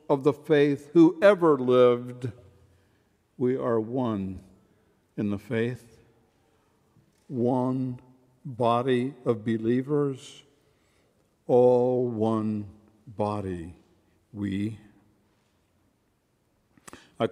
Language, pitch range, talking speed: English, 105-145 Hz, 70 wpm